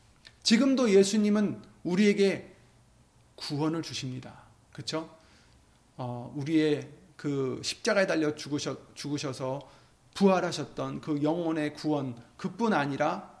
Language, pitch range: Korean, 150-215 Hz